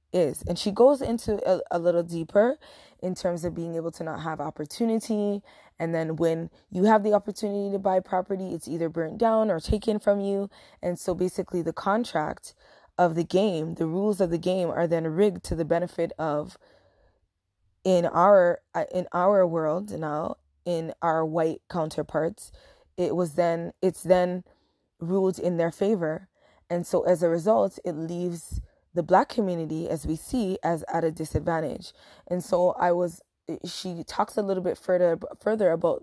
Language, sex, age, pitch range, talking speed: English, female, 20-39, 165-195 Hz, 175 wpm